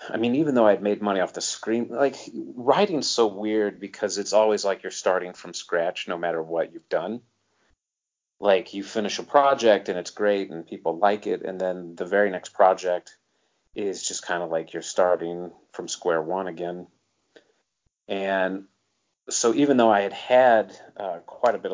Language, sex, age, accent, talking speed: English, male, 30-49, American, 185 wpm